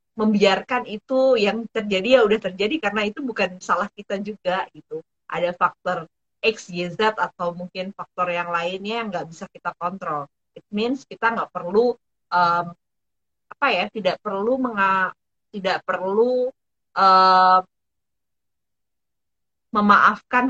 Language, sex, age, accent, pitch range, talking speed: Indonesian, female, 30-49, native, 180-220 Hz, 130 wpm